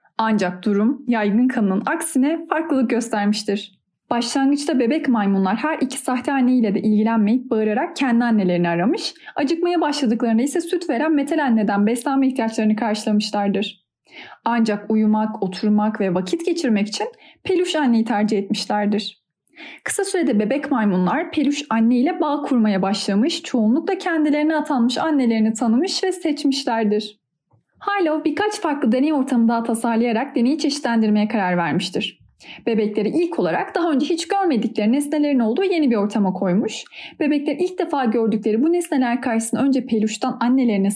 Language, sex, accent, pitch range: Turkish, female, native, 215-300 Hz